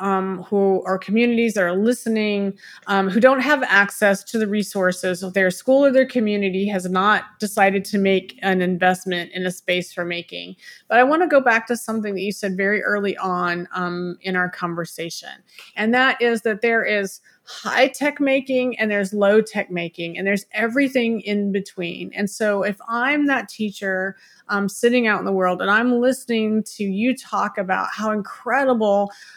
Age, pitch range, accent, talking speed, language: 30-49, 185-225 Hz, American, 180 wpm, English